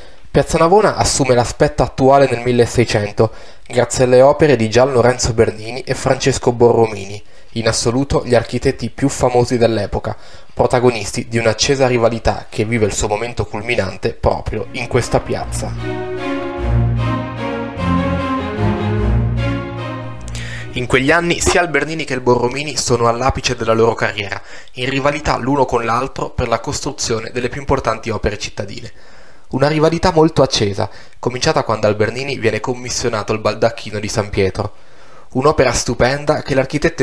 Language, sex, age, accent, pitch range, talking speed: Italian, male, 20-39, native, 110-135 Hz, 135 wpm